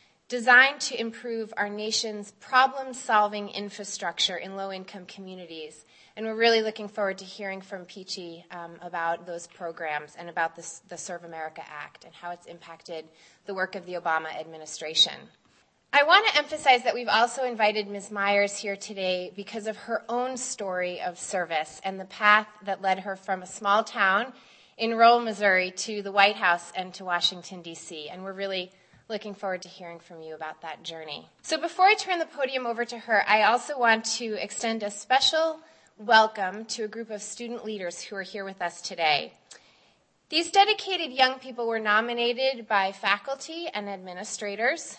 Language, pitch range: English, 180-235 Hz